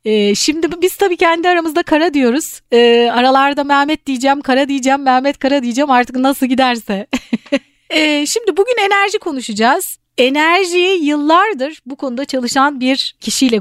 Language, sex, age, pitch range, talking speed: Turkish, female, 40-59, 235-325 Hz, 130 wpm